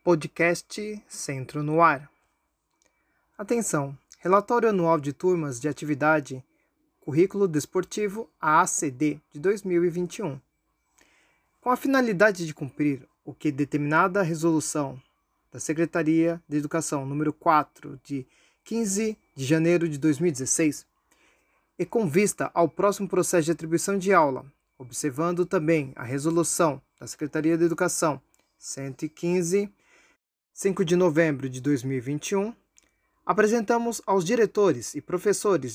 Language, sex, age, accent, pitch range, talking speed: Portuguese, male, 20-39, Brazilian, 150-195 Hz, 110 wpm